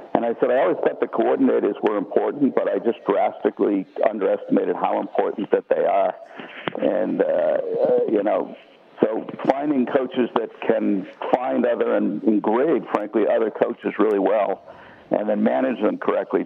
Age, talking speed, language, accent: 60-79, 155 wpm, English, American